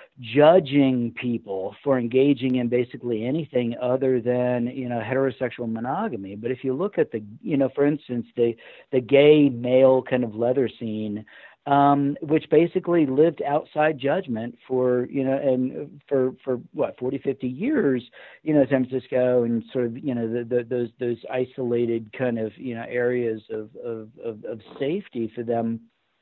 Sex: male